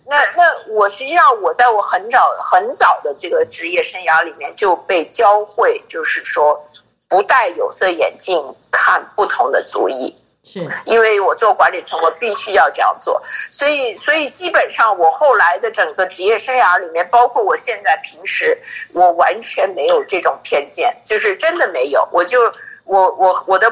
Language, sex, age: Chinese, female, 50-69